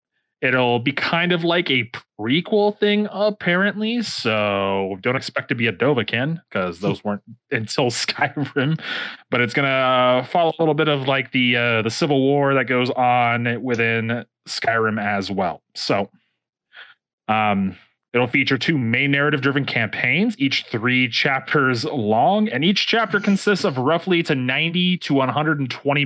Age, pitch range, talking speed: 30-49, 115-150 Hz, 150 wpm